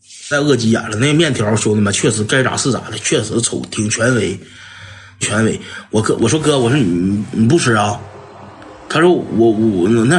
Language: Chinese